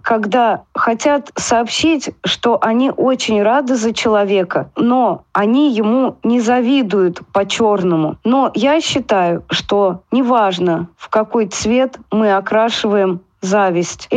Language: Russian